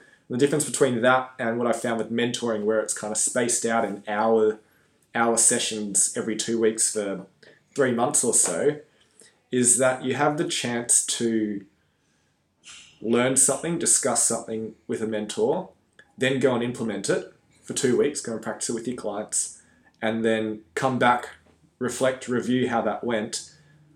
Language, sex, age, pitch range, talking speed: English, male, 20-39, 110-125 Hz, 165 wpm